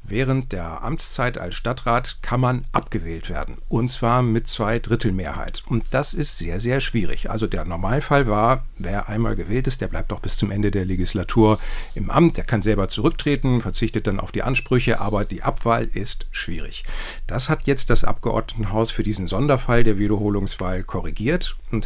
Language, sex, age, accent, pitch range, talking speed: German, male, 50-69, German, 105-125 Hz, 180 wpm